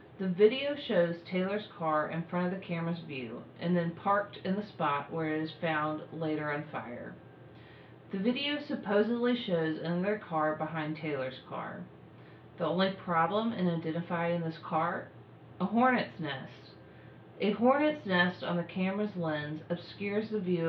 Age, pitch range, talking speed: 40-59, 160-210 Hz, 155 wpm